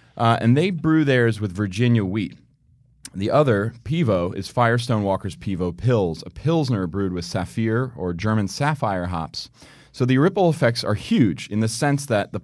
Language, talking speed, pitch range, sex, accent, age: English, 175 wpm, 100-135 Hz, male, American, 30-49